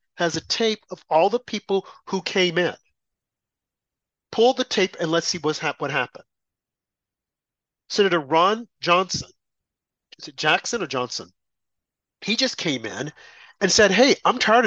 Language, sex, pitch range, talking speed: English, male, 155-205 Hz, 145 wpm